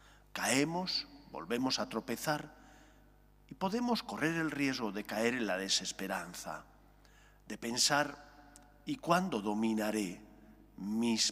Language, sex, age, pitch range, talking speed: English, male, 40-59, 105-145 Hz, 105 wpm